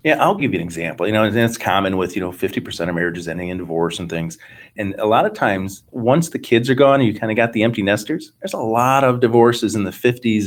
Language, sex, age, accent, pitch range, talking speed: English, male, 30-49, American, 105-130 Hz, 275 wpm